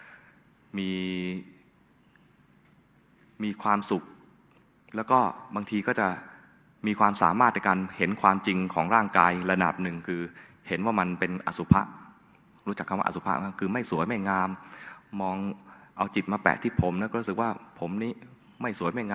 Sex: male